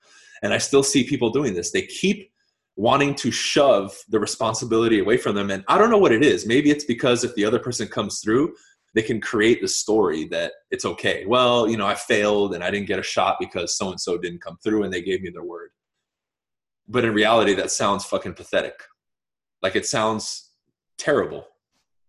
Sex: male